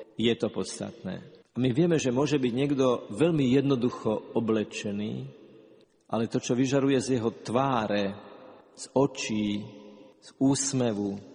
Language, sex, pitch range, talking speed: Slovak, male, 115-150 Hz, 125 wpm